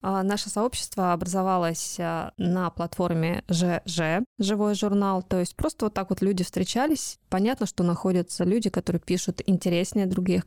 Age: 20-39